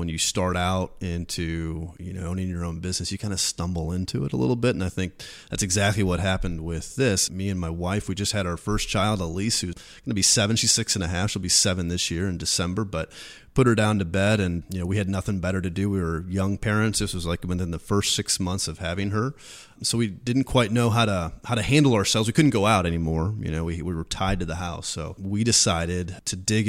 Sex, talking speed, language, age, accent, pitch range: male, 265 wpm, English, 30-49, American, 85-110 Hz